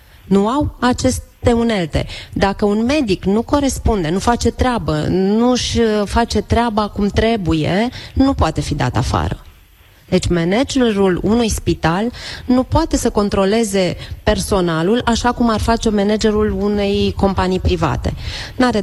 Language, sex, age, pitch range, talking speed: Romanian, female, 30-49, 170-230 Hz, 130 wpm